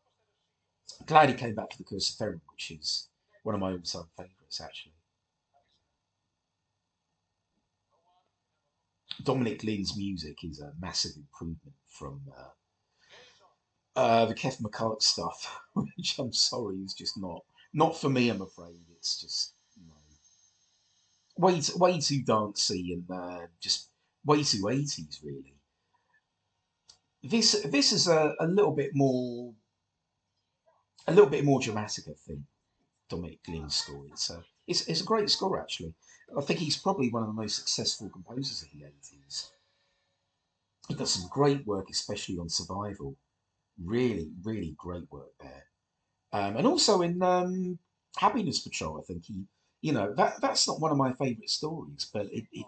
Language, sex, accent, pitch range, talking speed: English, male, British, 85-140 Hz, 155 wpm